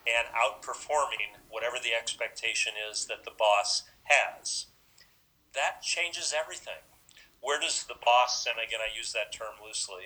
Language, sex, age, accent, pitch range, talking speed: English, male, 40-59, American, 110-125 Hz, 145 wpm